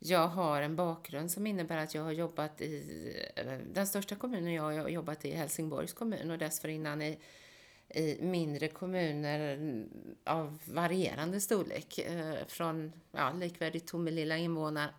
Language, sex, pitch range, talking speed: Swedish, female, 150-175 Hz, 140 wpm